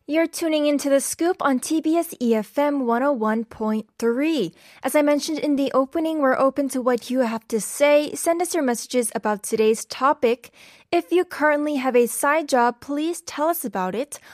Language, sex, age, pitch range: Korean, female, 10-29, 235-310 Hz